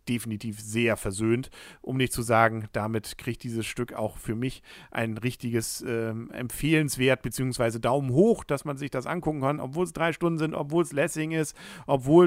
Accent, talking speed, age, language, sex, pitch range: German, 180 wpm, 50-69, German, male, 115-150 Hz